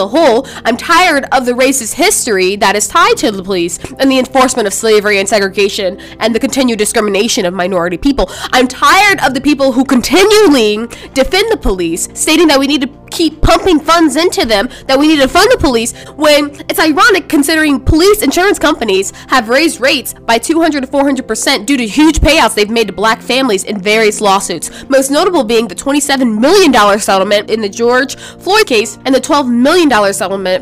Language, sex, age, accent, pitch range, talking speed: English, female, 20-39, American, 230-345 Hz, 195 wpm